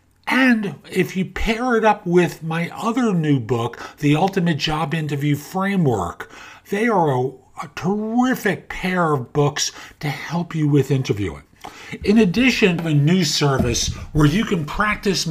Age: 50-69